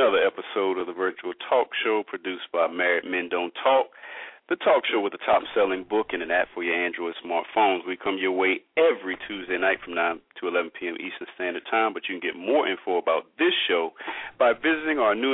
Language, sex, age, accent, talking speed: English, male, 40-59, American, 220 wpm